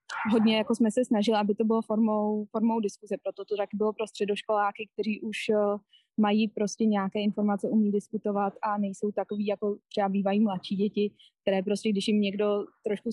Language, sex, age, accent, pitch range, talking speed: Czech, female, 20-39, native, 205-220 Hz, 180 wpm